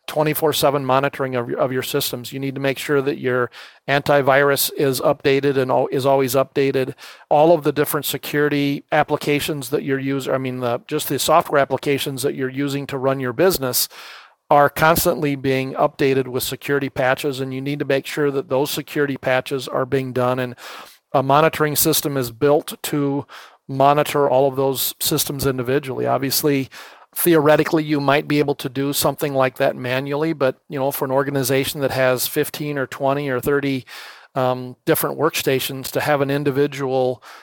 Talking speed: 170 wpm